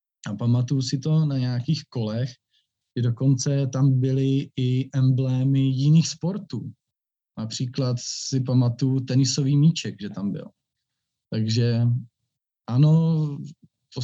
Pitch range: 115-135 Hz